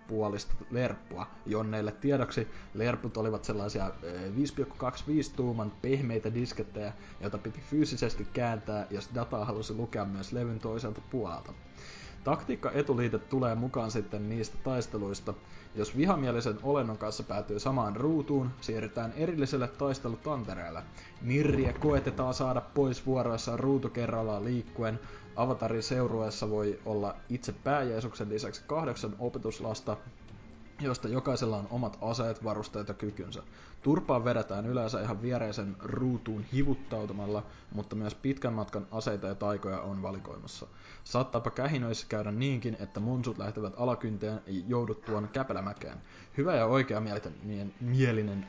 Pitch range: 105-125 Hz